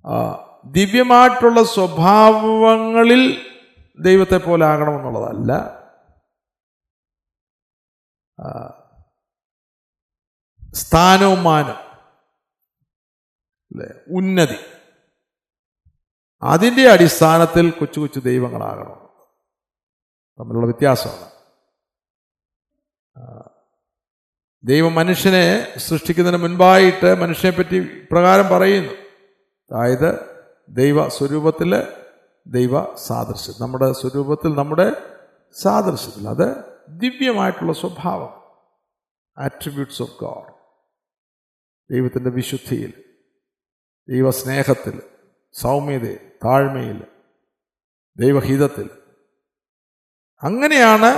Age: 50-69